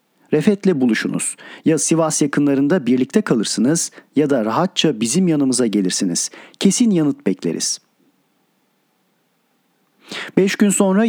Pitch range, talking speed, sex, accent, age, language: 140-185 Hz, 105 wpm, male, native, 40-59, Turkish